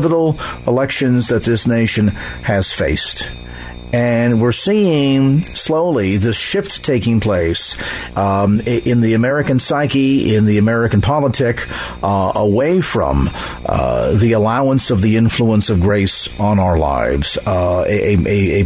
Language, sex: English, male